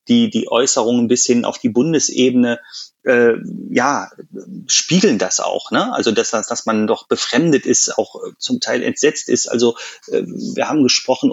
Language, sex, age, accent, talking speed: German, male, 30-49, German, 165 wpm